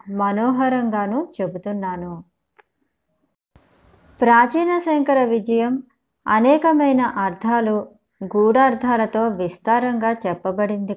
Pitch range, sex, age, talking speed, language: 205-255 Hz, male, 20-39, 55 wpm, Telugu